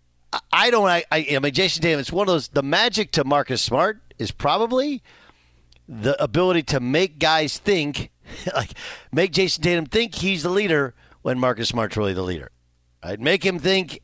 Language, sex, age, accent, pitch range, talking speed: English, male, 50-69, American, 100-150 Hz, 180 wpm